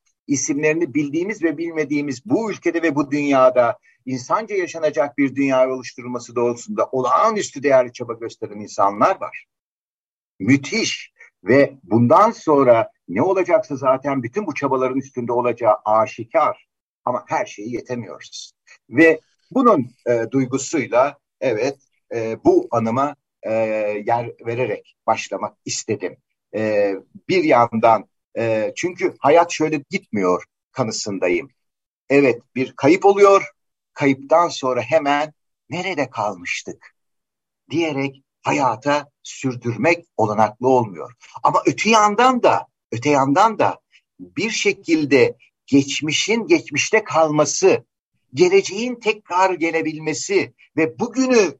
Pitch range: 125-195 Hz